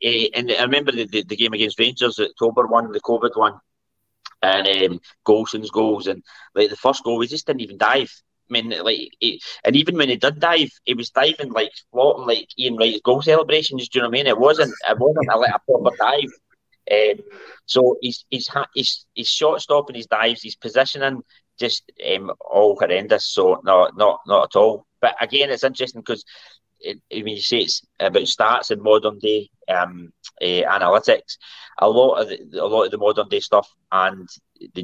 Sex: male